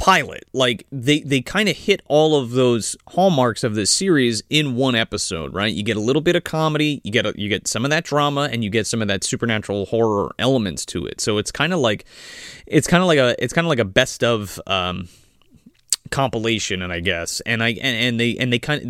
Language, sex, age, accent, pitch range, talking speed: English, male, 30-49, American, 110-160 Hz, 240 wpm